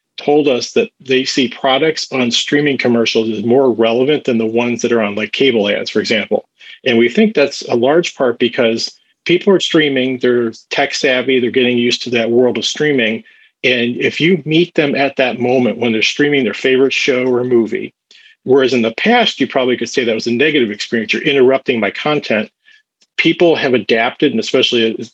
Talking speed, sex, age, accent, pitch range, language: 200 wpm, male, 40-59, American, 115-145 Hz, English